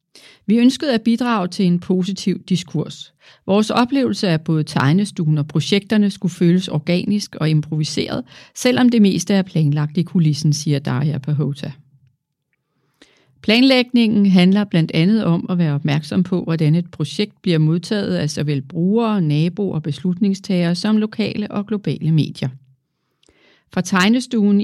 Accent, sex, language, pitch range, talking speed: native, female, Danish, 160-210 Hz, 140 wpm